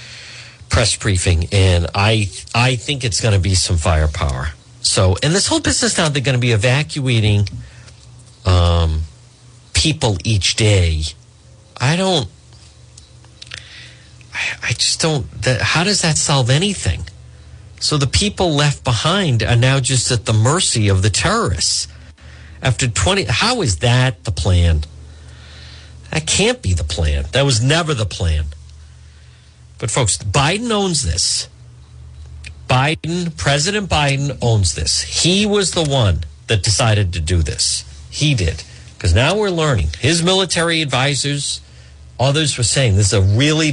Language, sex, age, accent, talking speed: English, male, 50-69, American, 145 wpm